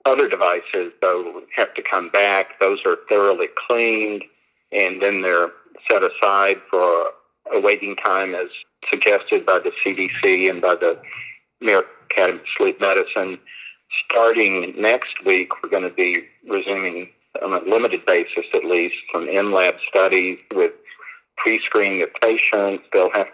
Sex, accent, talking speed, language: male, American, 145 wpm, English